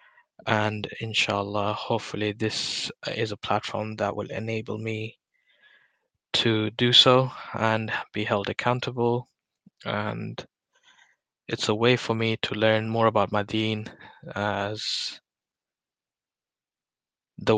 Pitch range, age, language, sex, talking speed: 105-115 Hz, 20-39, English, male, 110 wpm